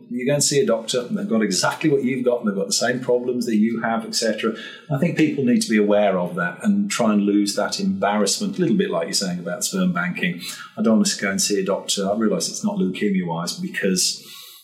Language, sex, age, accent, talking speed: English, male, 40-59, British, 255 wpm